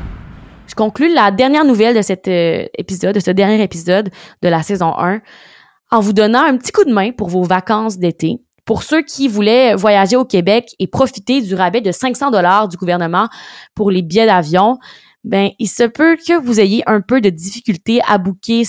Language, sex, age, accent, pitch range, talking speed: French, female, 20-39, Canadian, 185-235 Hz, 195 wpm